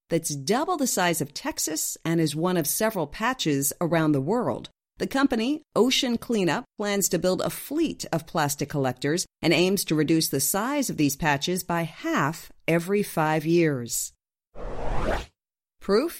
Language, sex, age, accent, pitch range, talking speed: English, female, 50-69, American, 155-220 Hz, 155 wpm